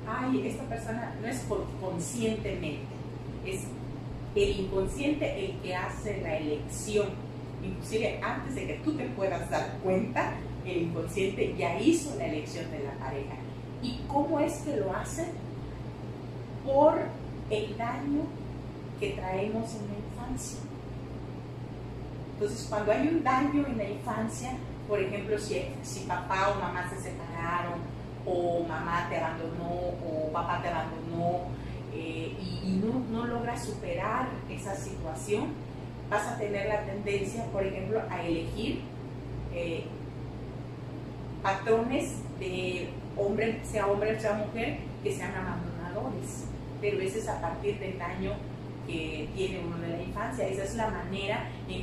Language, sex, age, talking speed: Spanish, female, 40-59, 135 wpm